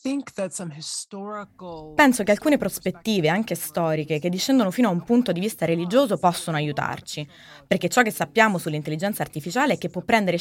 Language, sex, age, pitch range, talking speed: Italian, female, 20-39, 160-220 Hz, 155 wpm